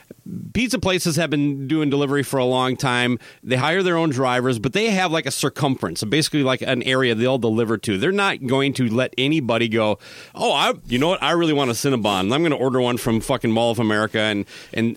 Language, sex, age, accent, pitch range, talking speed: English, male, 30-49, American, 115-150 Hz, 235 wpm